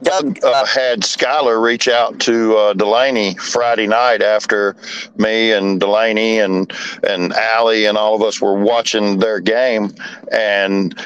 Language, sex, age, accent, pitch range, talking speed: English, male, 50-69, American, 110-165 Hz, 140 wpm